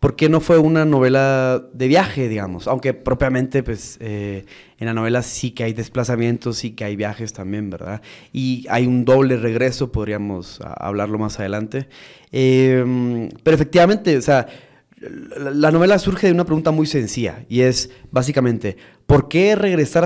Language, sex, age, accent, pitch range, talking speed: Spanish, male, 20-39, Mexican, 120-160 Hz, 160 wpm